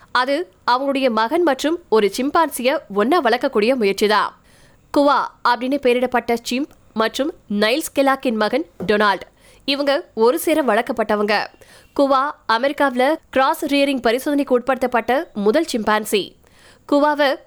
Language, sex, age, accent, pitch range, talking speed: Tamil, female, 20-39, native, 230-290 Hz, 55 wpm